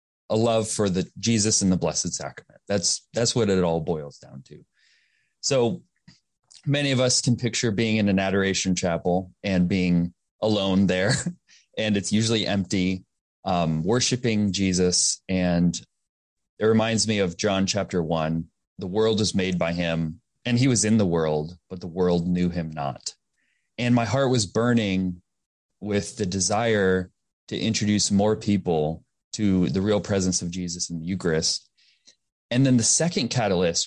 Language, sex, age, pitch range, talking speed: English, male, 30-49, 90-120 Hz, 160 wpm